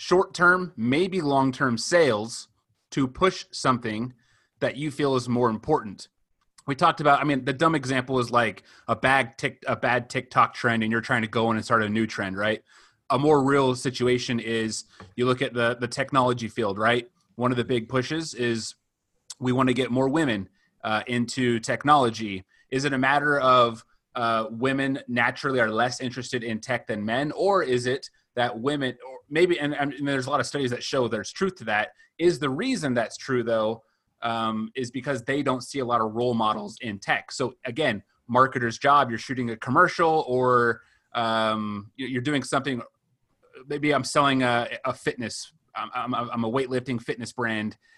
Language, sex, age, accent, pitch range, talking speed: English, male, 30-49, American, 115-140 Hz, 185 wpm